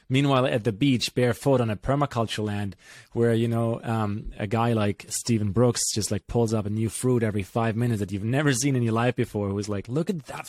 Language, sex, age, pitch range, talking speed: English, male, 20-39, 105-125 Hz, 240 wpm